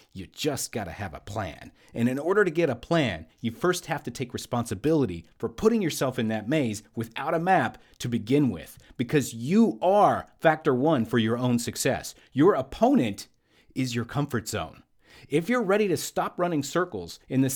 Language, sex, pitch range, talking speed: English, male, 115-160 Hz, 190 wpm